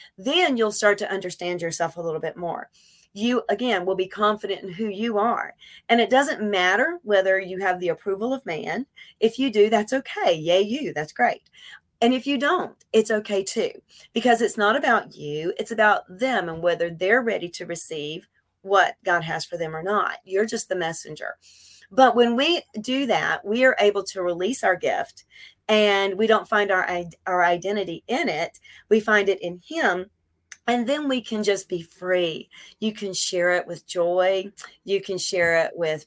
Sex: female